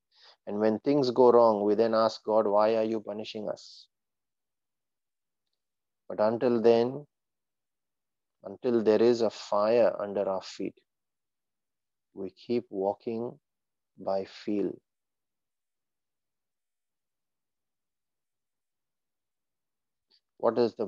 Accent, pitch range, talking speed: Indian, 105-120 Hz, 95 wpm